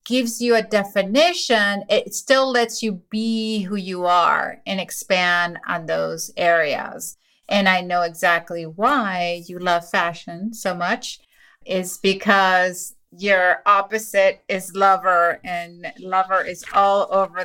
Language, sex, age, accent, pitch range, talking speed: English, female, 30-49, American, 185-230 Hz, 130 wpm